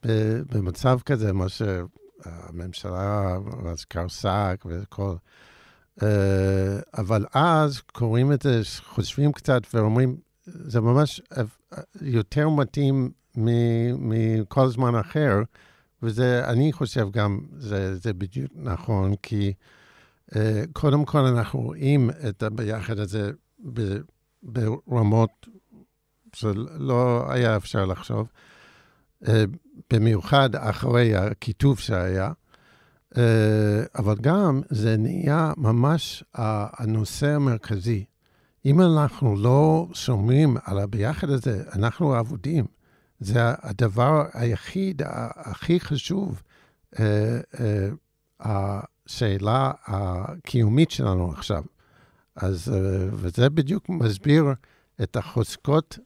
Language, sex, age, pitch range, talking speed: Hebrew, male, 60-79, 105-140 Hz, 95 wpm